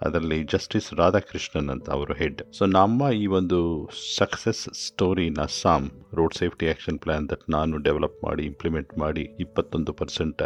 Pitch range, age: 75-95 Hz, 50-69